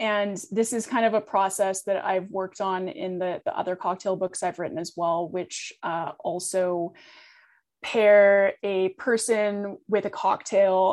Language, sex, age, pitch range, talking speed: English, female, 20-39, 185-225 Hz, 165 wpm